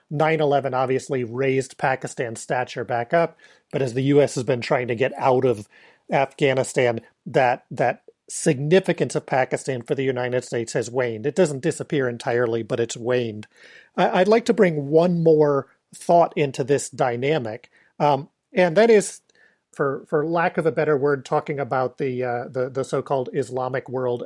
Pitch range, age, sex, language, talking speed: 130-155 Hz, 40-59, male, English, 165 wpm